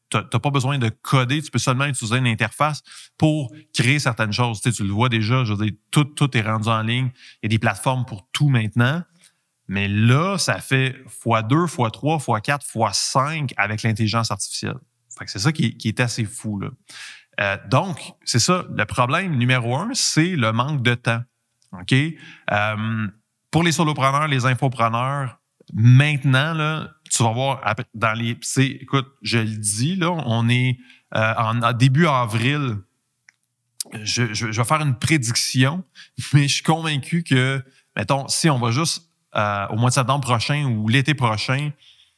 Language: French